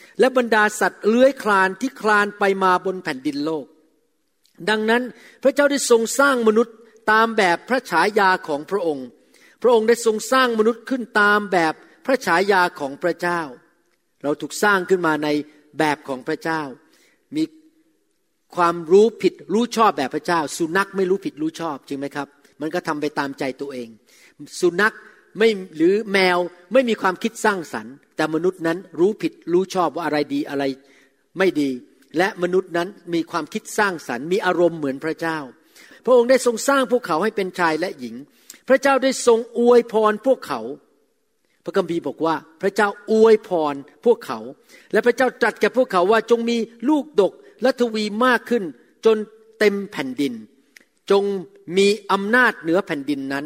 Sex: male